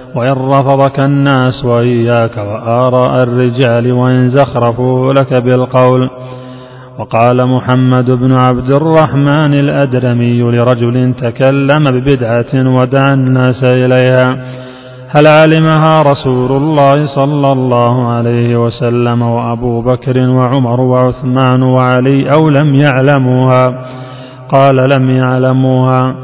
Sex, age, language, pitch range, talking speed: male, 30-49, Arabic, 125-135 Hz, 95 wpm